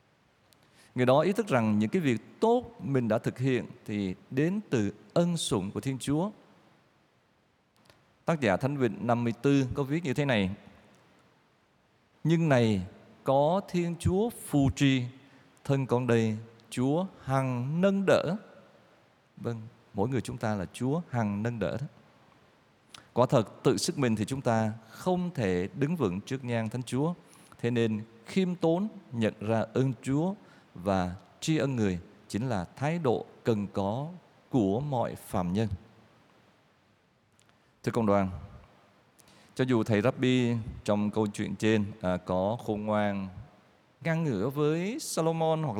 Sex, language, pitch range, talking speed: male, Vietnamese, 110-155 Hz, 150 wpm